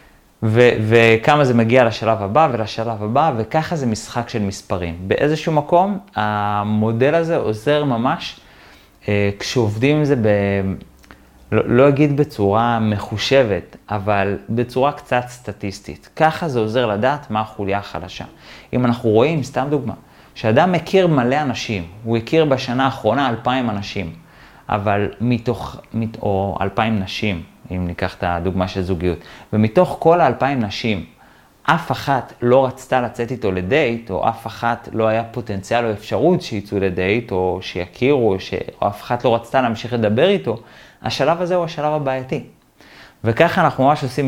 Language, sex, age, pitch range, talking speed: Hebrew, male, 30-49, 105-135 Hz, 145 wpm